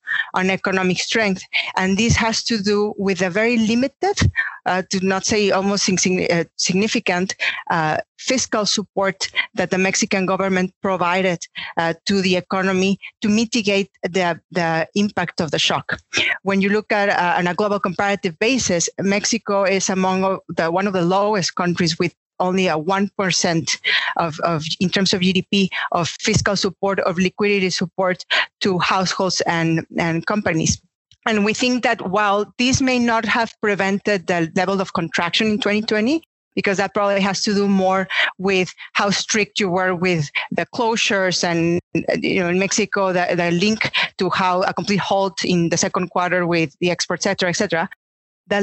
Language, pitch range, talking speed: French, 185-210 Hz, 165 wpm